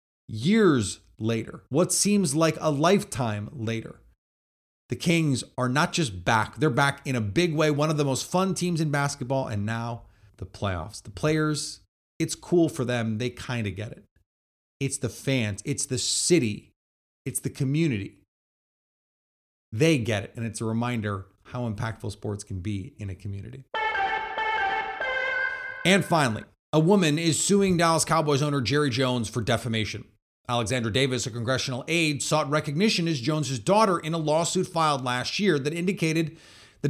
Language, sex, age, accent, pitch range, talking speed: English, male, 30-49, American, 115-165 Hz, 160 wpm